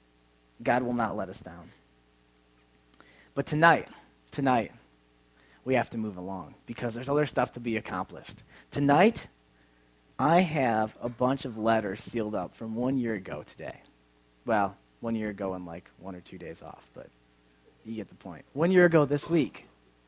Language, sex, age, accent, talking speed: English, male, 20-39, American, 165 wpm